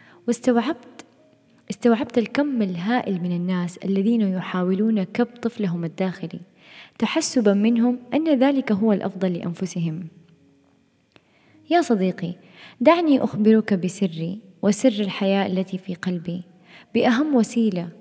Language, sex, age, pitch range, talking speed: Arabic, female, 20-39, 180-225 Hz, 100 wpm